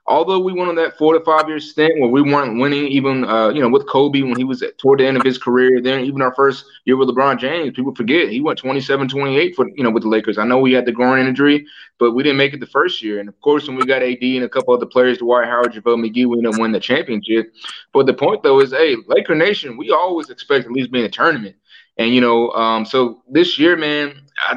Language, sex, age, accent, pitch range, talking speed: English, male, 20-39, American, 120-145 Hz, 275 wpm